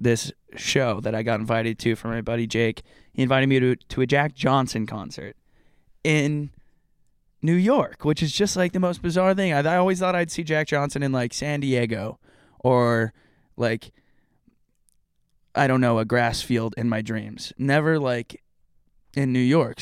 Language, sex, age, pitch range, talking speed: English, male, 20-39, 115-140 Hz, 180 wpm